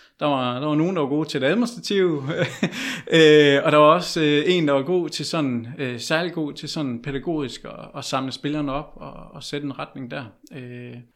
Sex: male